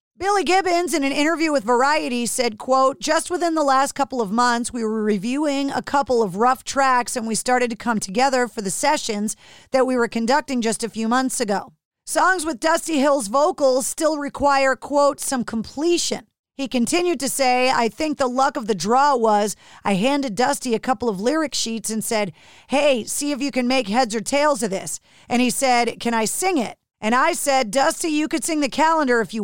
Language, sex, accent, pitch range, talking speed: English, female, American, 230-285 Hz, 210 wpm